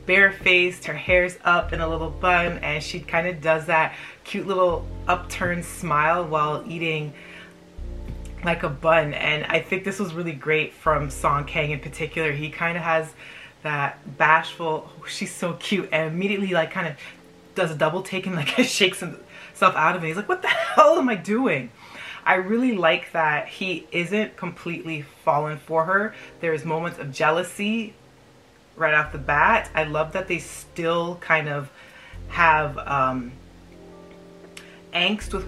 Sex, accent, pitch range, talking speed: female, American, 150-180 Hz, 165 wpm